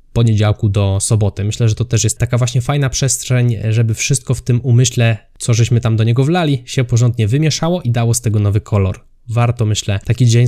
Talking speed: 205 wpm